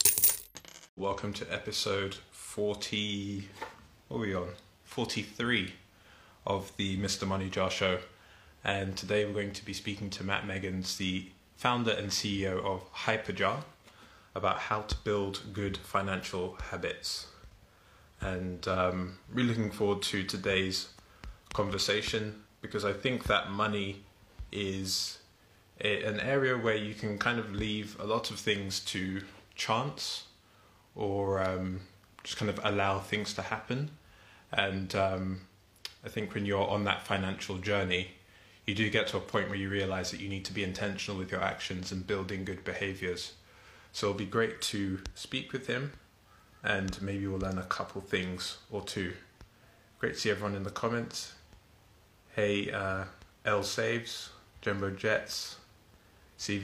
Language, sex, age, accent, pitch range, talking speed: English, male, 20-39, British, 95-105 Hz, 145 wpm